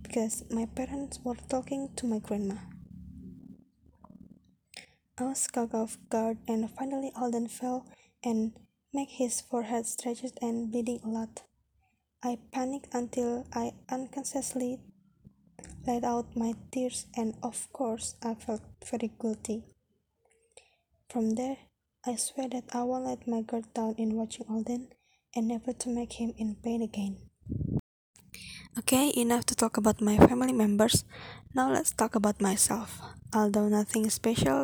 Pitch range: 210-250 Hz